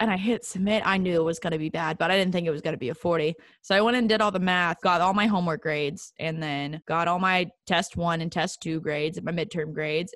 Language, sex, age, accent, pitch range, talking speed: English, female, 20-39, American, 165-210 Hz, 300 wpm